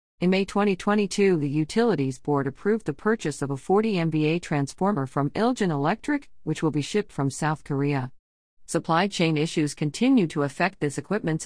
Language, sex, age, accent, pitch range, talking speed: English, female, 50-69, American, 145-190 Hz, 170 wpm